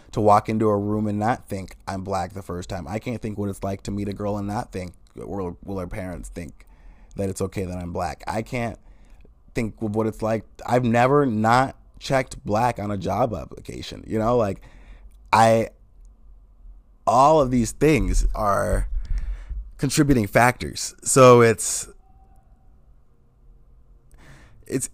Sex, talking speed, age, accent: male, 160 wpm, 30-49, American